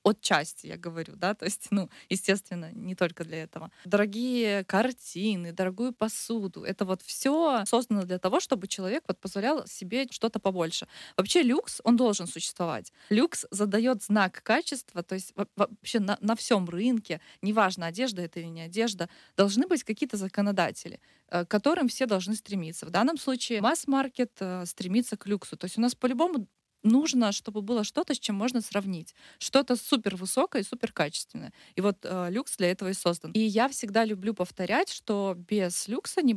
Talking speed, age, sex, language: 170 wpm, 20-39, female, Russian